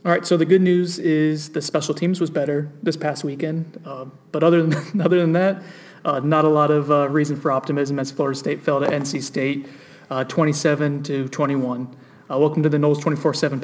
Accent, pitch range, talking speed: American, 135-155 Hz, 210 wpm